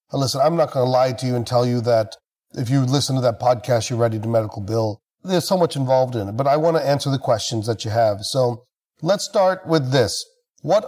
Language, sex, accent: English, male, American